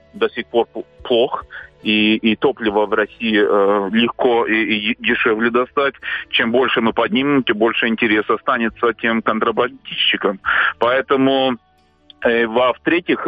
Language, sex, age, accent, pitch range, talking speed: Russian, male, 30-49, native, 110-130 Hz, 120 wpm